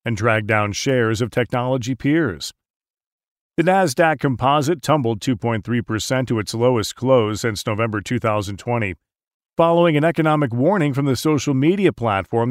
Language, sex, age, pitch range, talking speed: English, male, 40-59, 115-155 Hz, 135 wpm